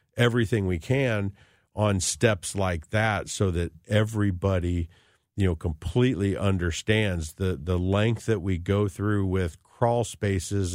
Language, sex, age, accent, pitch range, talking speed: English, male, 50-69, American, 95-115 Hz, 135 wpm